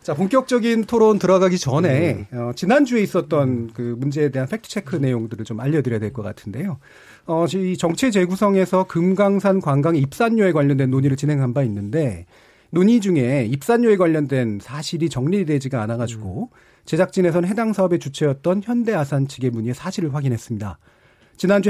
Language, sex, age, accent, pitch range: Korean, male, 40-59, native, 135-200 Hz